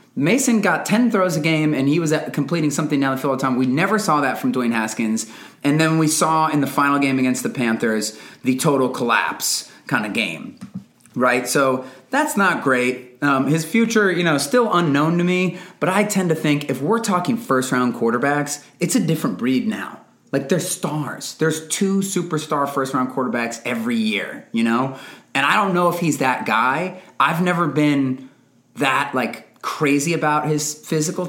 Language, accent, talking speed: English, American, 190 wpm